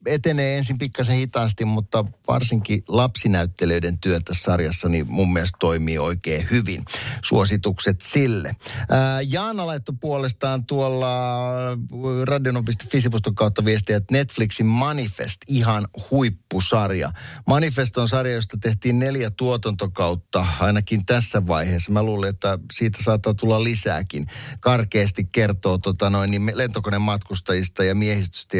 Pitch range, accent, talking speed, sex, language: 95-125 Hz, native, 120 wpm, male, Finnish